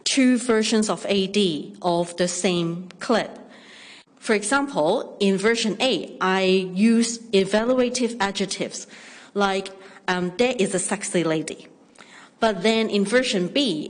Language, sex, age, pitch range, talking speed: English, female, 40-59, 190-230 Hz, 125 wpm